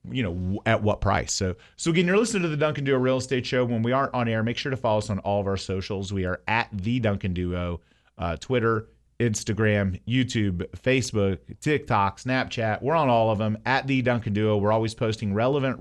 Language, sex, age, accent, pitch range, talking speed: English, male, 40-59, American, 95-125 Hz, 220 wpm